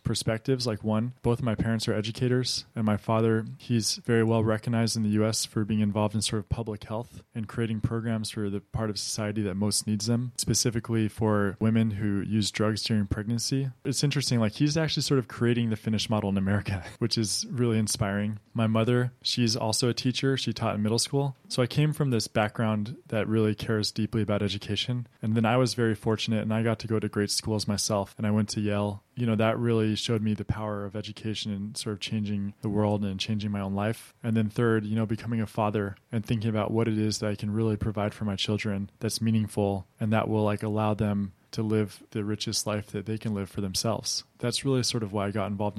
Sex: male